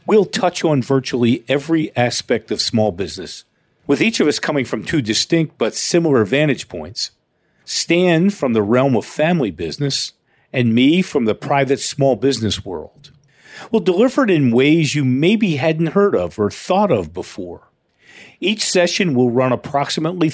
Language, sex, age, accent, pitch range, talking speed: English, male, 50-69, American, 120-175 Hz, 160 wpm